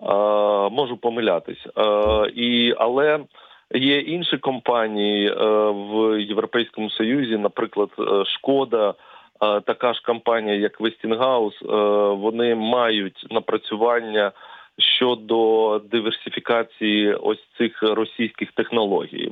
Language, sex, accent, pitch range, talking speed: Ukrainian, male, native, 105-120 Hz, 90 wpm